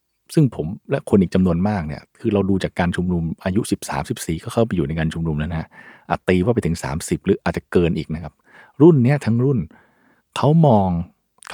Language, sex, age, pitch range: Thai, male, 60-79, 95-140 Hz